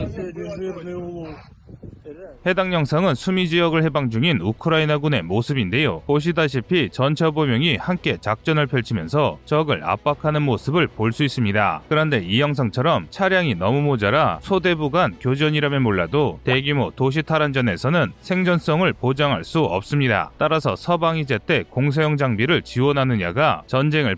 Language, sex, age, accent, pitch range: Korean, male, 30-49, native, 125-160 Hz